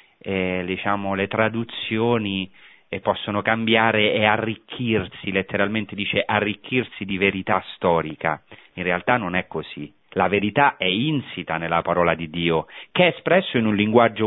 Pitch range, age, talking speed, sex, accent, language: 100-125 Hz, 30-49, 140 wpm, male, native, Italian